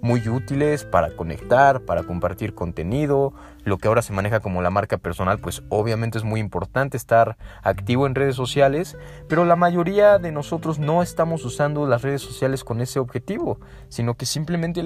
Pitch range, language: 100-140 Hz, Spanish